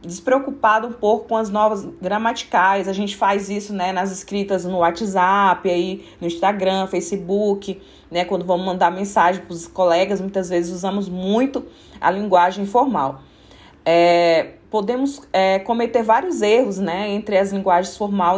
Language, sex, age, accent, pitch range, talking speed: Portuguese, female, 20-39, Brazilian, 185-225 Hz, 155 wpm